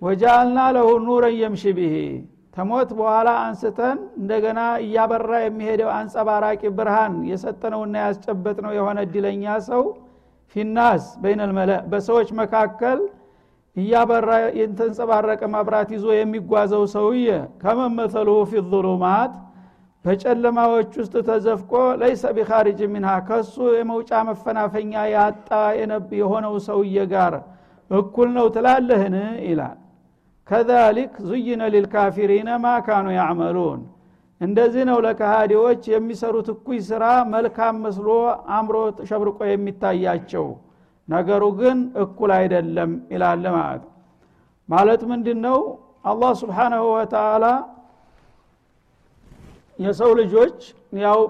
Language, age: Amharic, 60-79